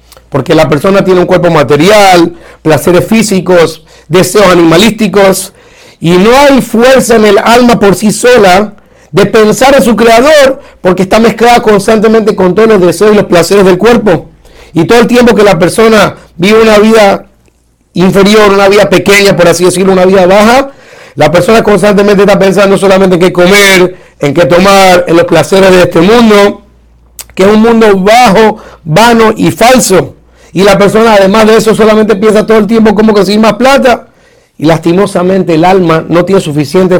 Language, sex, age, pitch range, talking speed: Spanish, male, 50-69, 170-220 Hz, 175 wpm